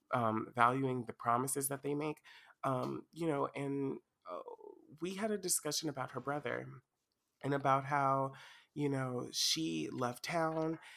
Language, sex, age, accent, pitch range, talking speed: English, male, 30-49, American, 120-145 Hz, 150 wpm